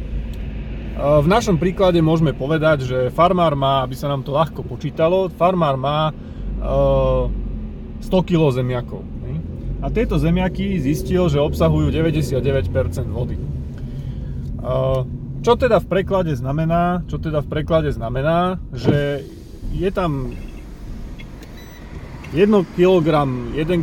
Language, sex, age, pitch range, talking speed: Slovak, male, 30-49, 130-165 Hz, 95 wpm